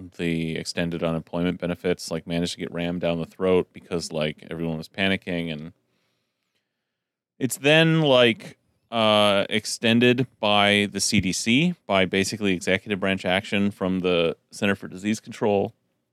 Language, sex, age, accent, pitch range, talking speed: English, male, 30-49, American, 85-105 Hz, 140 wpm